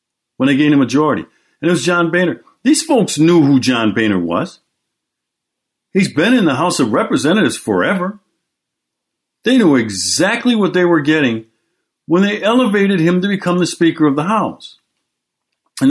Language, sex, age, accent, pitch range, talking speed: English, male, 60-79, American, 140-205 Hz, 165 wpm